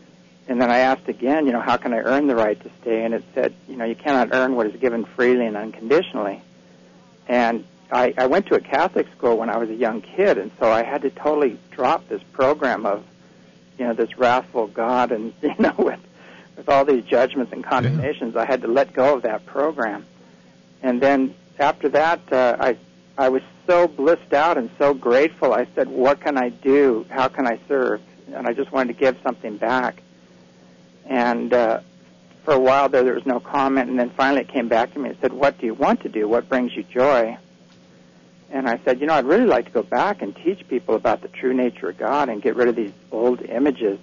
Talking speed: 225 wpm